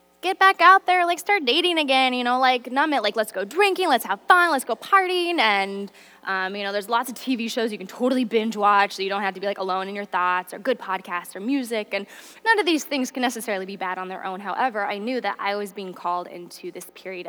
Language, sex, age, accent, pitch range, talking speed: English, female, 10-29, American, 195-265 Hz, 265 wpm